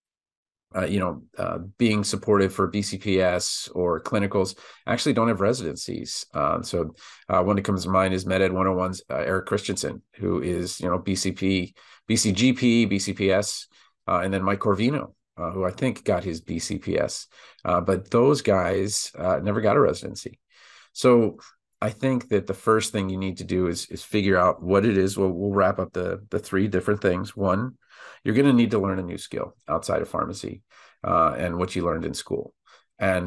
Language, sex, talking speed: English, male, 185 wpm